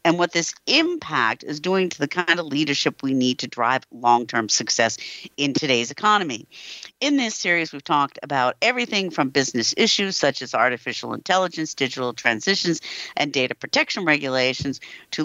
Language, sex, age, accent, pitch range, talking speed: English, female, 50-69, American, 130-175 Hz, 160 wpm